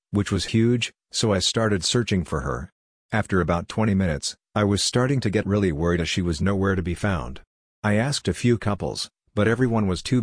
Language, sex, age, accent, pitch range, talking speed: English, male, 50-69, American, 90-110 Hz, 210 wpm